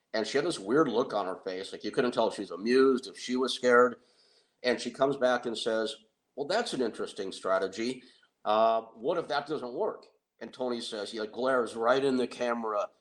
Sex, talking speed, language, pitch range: male, 220 wpm, English, 110-130 Hz